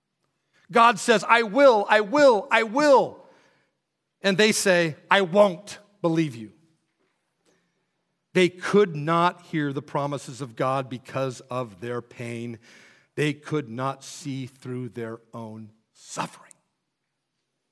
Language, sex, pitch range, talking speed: English, male, 150-200 Hz, 120 wpm